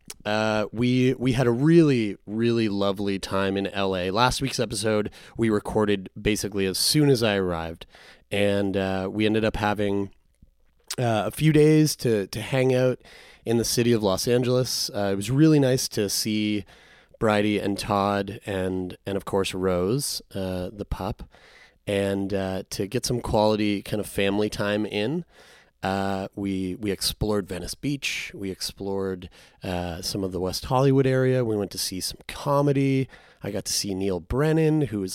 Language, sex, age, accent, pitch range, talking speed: English, male, 30-49, American, 95-125 Hz, 170 wpm